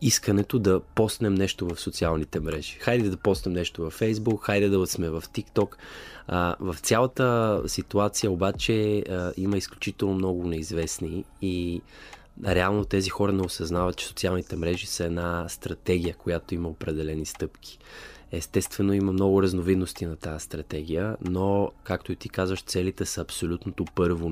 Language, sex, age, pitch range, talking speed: Bulgarian, male, 20-39, 85-100 Hz, 145 wpm